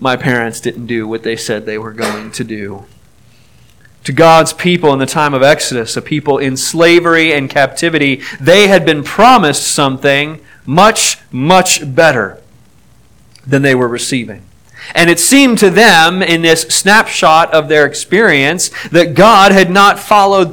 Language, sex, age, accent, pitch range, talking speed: English, male, 30-49, American, 135-180 Hz, 160 wpm